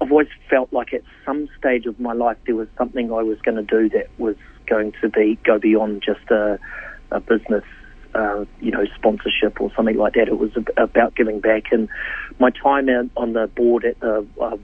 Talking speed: 215 wpm